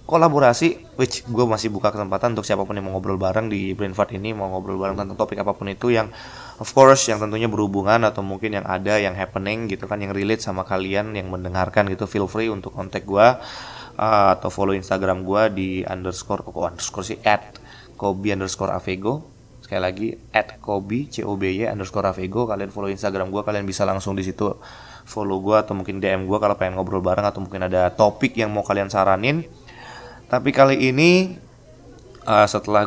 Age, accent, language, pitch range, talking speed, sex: 20-39, native, Indonesian, 100-120 Hz, 190 wpm, male